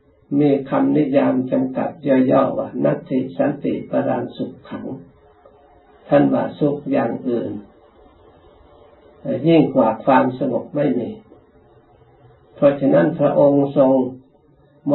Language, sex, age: Thai, male, 60-79